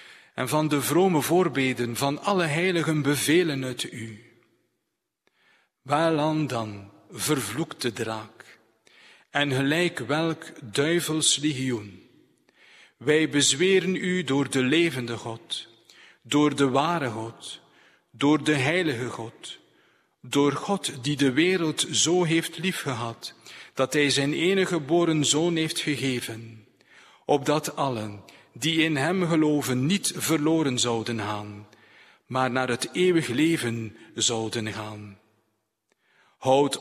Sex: male